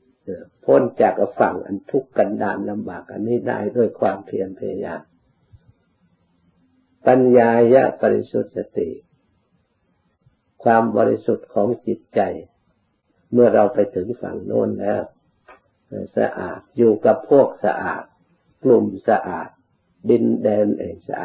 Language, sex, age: Thai, male, 60-79